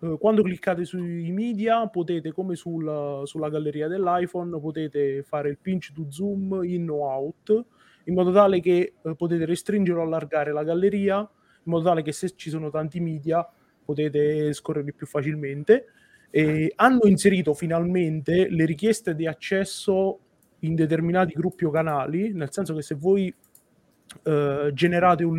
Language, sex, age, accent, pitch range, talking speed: Italian, male, 20-39, native, 155-190 Hz, 150 wpm